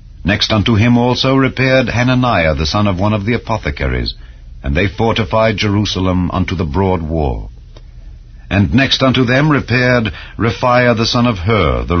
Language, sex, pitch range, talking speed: English, male, 80-115 Hz, 160 wpm